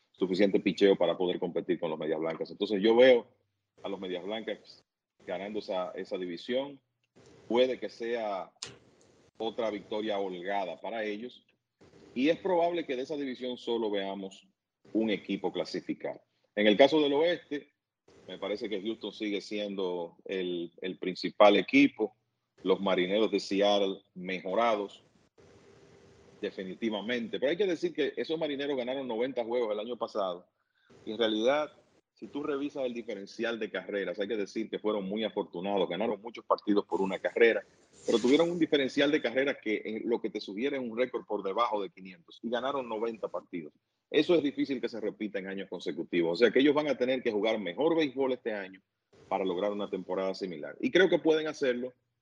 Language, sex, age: English, male, 40-59